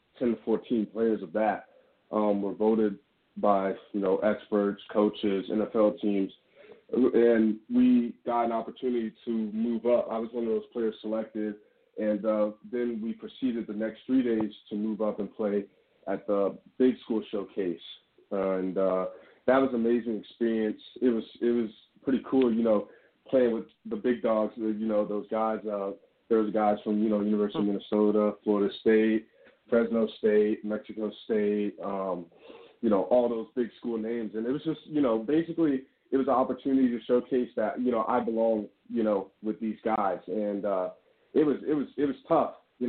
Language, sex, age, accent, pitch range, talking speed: English, male, 30-49, American, 105-120 Hz, 180 wpm